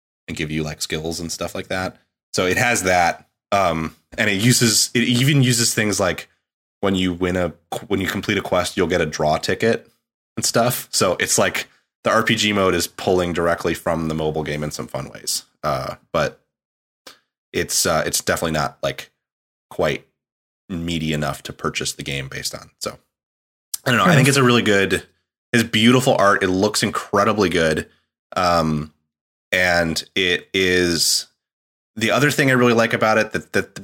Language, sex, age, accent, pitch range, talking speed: English, male, 20-39, American, 80-105 Hz, 185 wpm